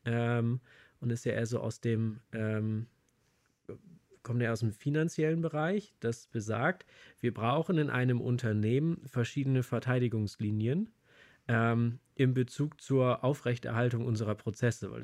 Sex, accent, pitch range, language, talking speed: male, German, 115-145 Hz, German, 130 wpm